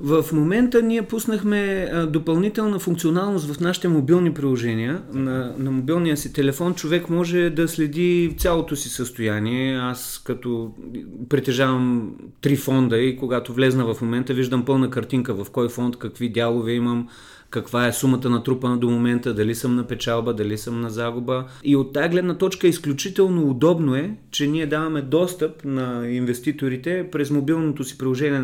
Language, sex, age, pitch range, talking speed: Bulgarian, male, 30-49, 125-170 Hz, 155 wpm